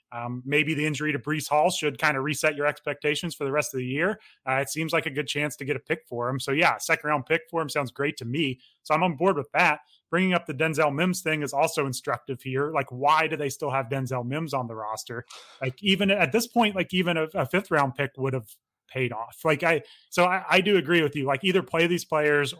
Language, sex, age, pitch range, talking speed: English, male, 30-49, 135-160 Hz, 265 wpm